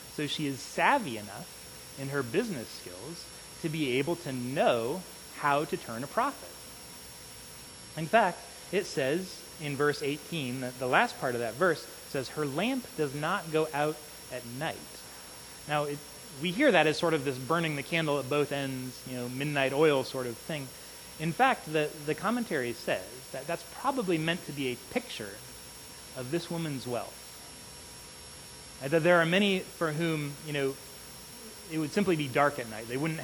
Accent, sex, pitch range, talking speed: American, male, 130-165 Hz, 180 wpm